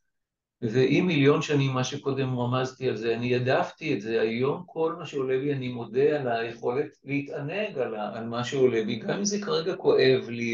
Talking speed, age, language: 180 wpm, 60-79, Hebrew